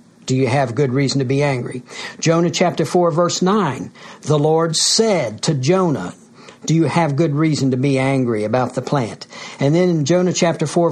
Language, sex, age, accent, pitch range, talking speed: English, male, 60-79, American, 140-175 Hz, 190 wpm